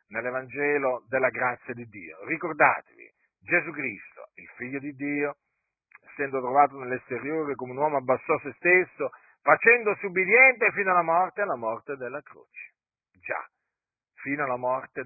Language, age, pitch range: Italian, 50-69, 120-170 Hz